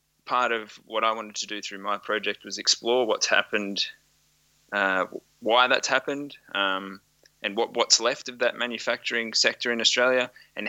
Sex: male